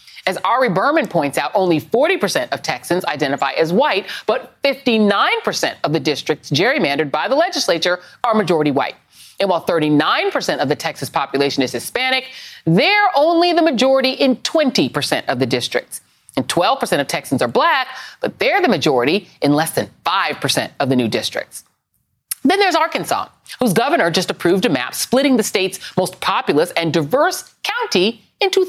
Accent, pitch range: American, 175-290 Hz